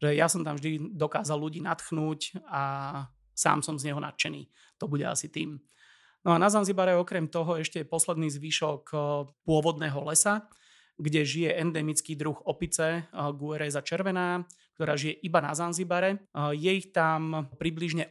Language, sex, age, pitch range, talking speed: Slovak, male, 30-49, 150-165 Hz, 150 wpm